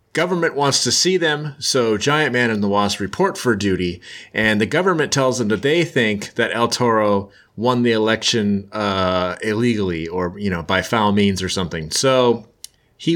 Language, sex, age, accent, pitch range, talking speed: English, male, 30-49, American, 105-125 Hz, 180 wpm